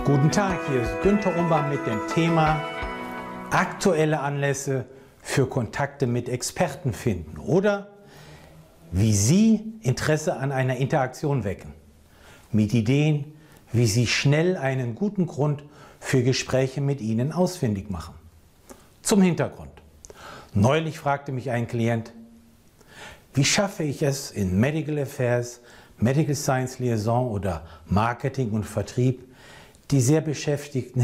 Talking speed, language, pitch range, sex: 120 wpm, German, 110-150 Hz, male